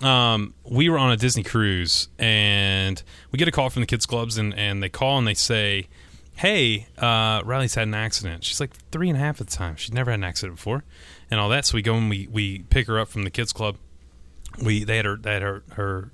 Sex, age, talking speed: male, 30-49, 255 wpm